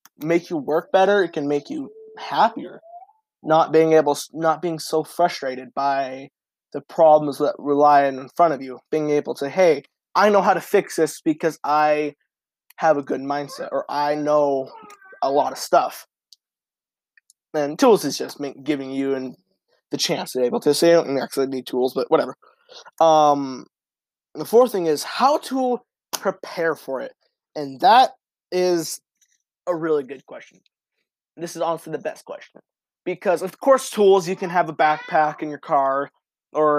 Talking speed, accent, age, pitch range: 175 wpm, American, 20-39, 145-180 Hz